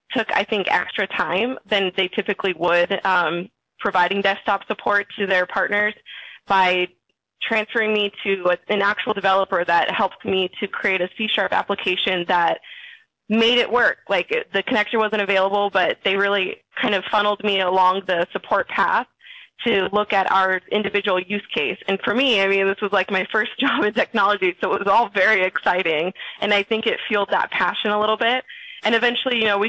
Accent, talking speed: American, 185 wpm